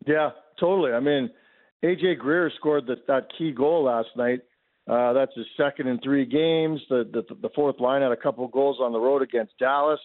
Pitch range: 125-145 Hz